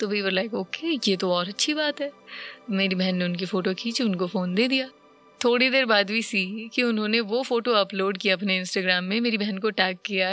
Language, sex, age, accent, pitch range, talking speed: Hindi, female, 20-39, native, 190-240 Hz, 230 wpm